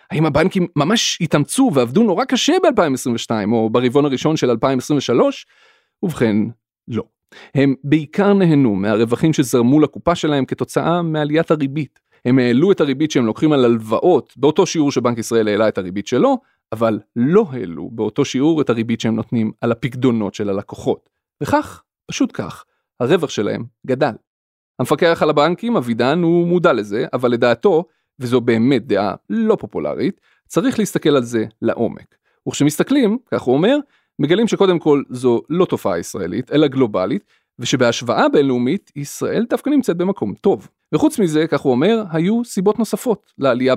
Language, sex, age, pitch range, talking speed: Hebrew, male, 30-49, 120-195 Hz, 150 wpm